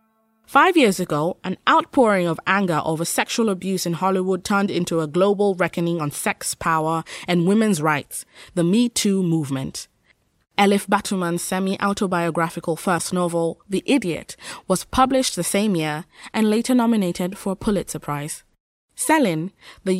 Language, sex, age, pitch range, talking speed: English, female, 20-39, 175-230 Hz, 145 wpm